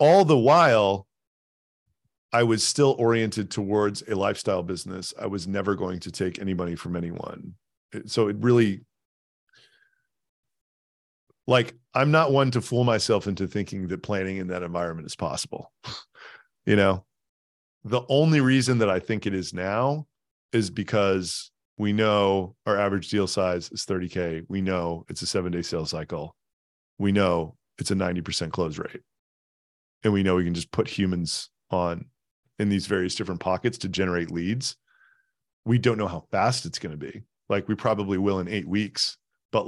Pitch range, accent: 90-120 Hz, American